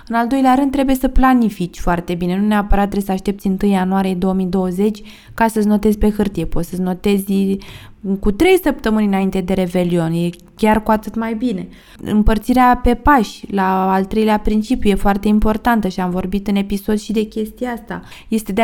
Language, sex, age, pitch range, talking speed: Romanian, female, 20-39, 200-235 Hz, 185 wpm